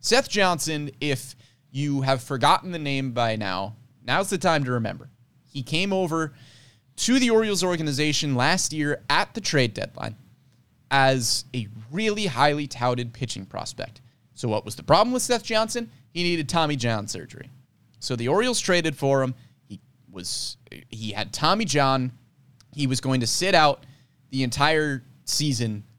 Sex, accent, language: male, American, English